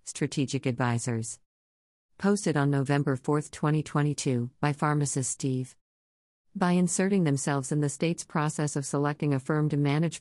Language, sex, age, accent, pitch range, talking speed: English, female, 50-69, American, 130-155 Hz, 135 wpm